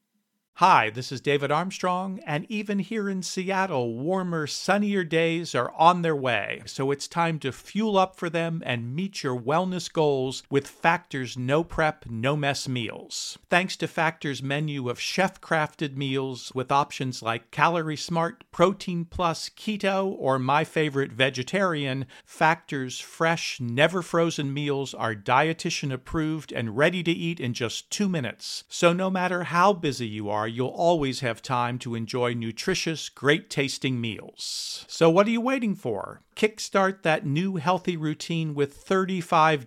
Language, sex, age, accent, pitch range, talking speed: English, male, 50-69, American, 130-175 Hz, 150 wpm